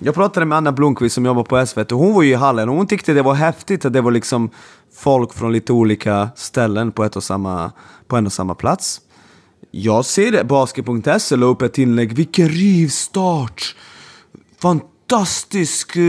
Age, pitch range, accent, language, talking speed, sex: 20-39, 125-160 Hz, native, Swedish, 185 wpm, male